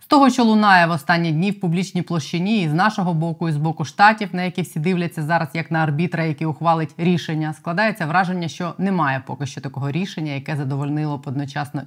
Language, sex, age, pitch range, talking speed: Ukrainian, female, 20-39, 155-185 Hz, 195 wpm